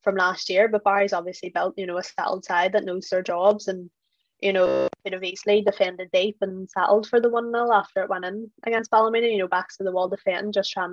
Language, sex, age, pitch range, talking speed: English, female, 20-39, 185-205 Hz, 240 wpm